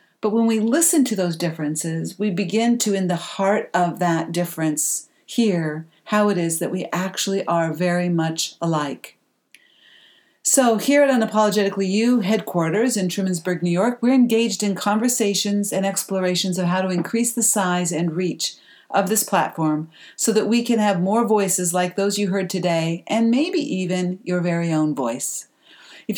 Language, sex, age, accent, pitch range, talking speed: English, female, 50-69, American, 170-220 Hz, 170 wpm